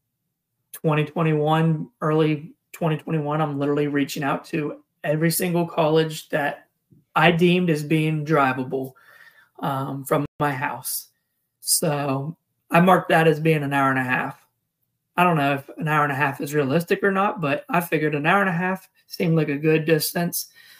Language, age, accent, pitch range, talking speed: English, 20-39, American, 145-165 Hz, 165 wpm